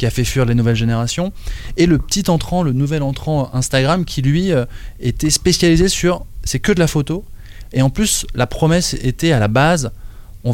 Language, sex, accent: French, male, French